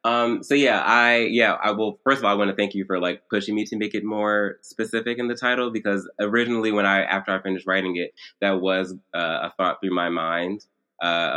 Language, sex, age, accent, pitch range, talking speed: English, male, 20-39, American, 90-100 Hz, 235 wpm